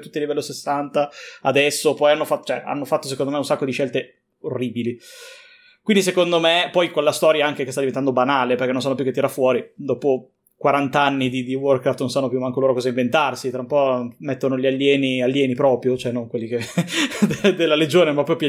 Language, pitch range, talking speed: Italian, 130-165 Hz, 215 wpm